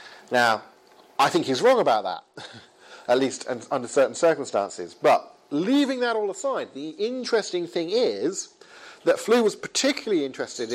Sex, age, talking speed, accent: male, 40-59, 145 wpm, British